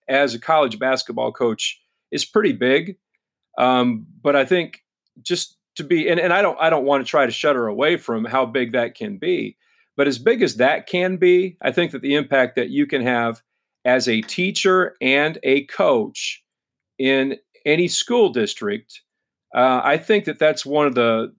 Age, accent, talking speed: 40-59, American, 190 wpm